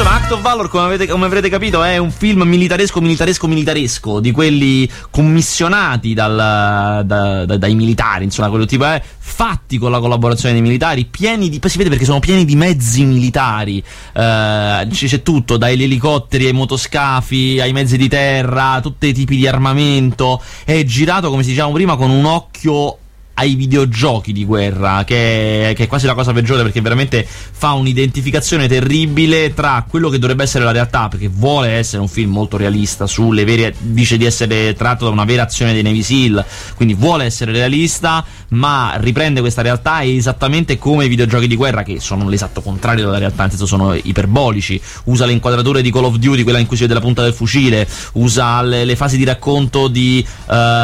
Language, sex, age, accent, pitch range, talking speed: Italian, male, 30-49, native, 115-140 Hz, 190 wpm